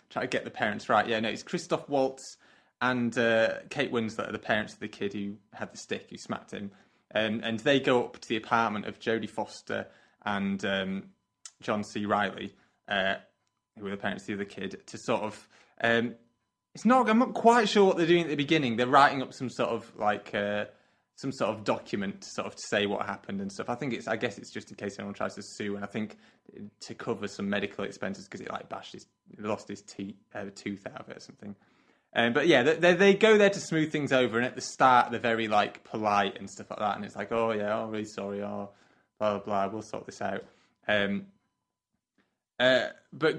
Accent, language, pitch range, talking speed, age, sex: British, English, 105-140 Hz, 235 wpm, 20-39, male